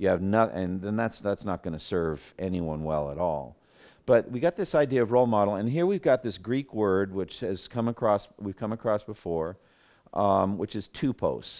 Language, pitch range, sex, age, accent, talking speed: English, 95-115 Hz, male, 50-69, American, 215 wpm